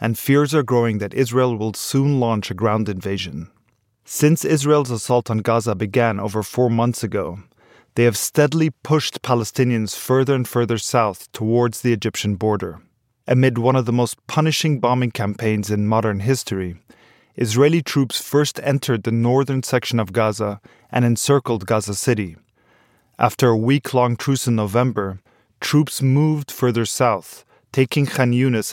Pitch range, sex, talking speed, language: 110-130 Hz, male, 150 wpm, English